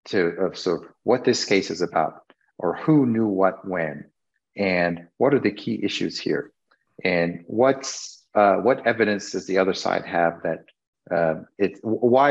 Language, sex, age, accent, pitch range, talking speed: English, male, 40-59, American, 90-110 Hz, 165 wpm